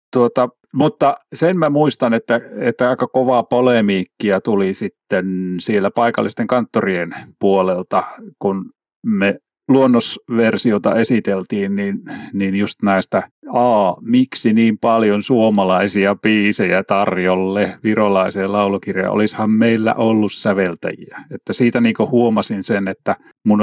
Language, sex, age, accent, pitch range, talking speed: Finnish, male, 30-49, native, 100-120 Hz, 115 wpm